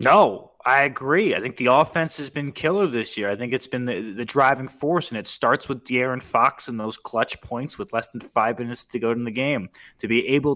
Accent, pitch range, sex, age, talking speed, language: American, 105-135 Hz, male, 20-39, 245 wpm, English